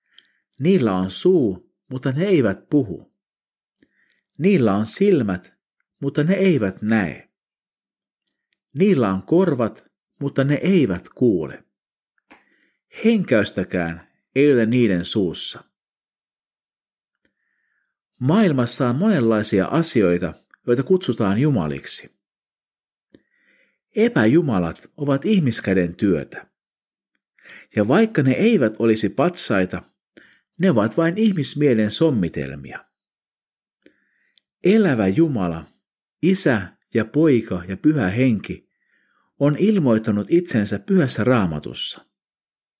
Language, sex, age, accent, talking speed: Finnish, male, 50-69, native, 85 wpm